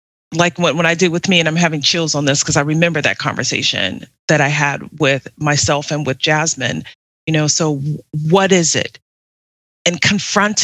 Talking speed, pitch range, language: 185 wpm, 155-210 Hz, English